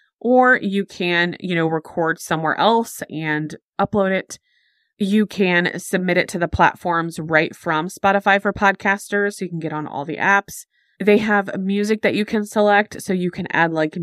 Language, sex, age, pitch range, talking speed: English, female, 20-39, 160-210 Hz, 185 wpm